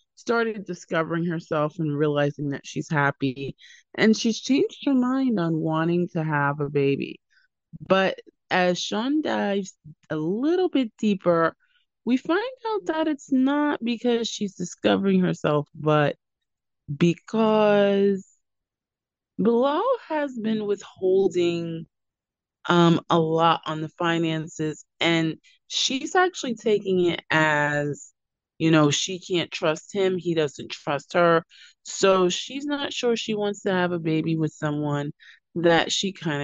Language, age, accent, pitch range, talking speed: English, 20-39, American, 155-215 Hz, 130 wpm